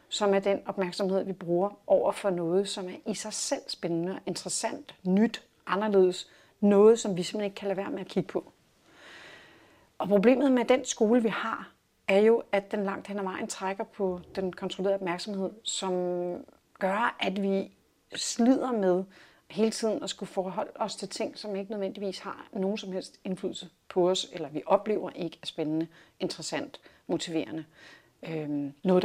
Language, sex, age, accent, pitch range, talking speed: Danish, female, 40-59, native, 180-215 Hz, 170 wpm